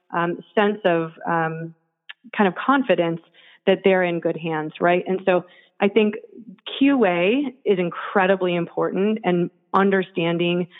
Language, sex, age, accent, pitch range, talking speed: English, female, 30-49, American, 170-190 Hz, 130 wpm